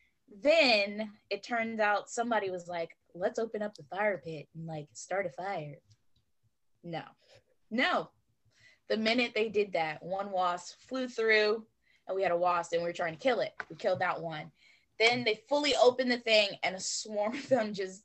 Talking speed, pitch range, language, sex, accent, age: 190 wpm, 170-215 Hz, English, female, American, 10-29